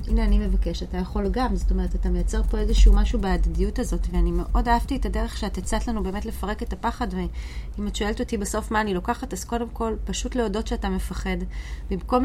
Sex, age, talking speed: female, 30-49, 210 wpm